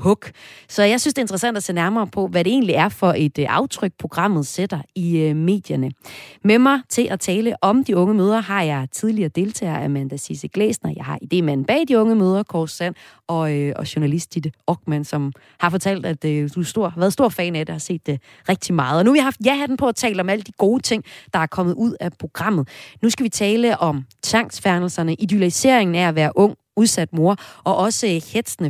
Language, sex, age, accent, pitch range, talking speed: Danish, female, 30-49, native, 165-220 Hz, 225 wpm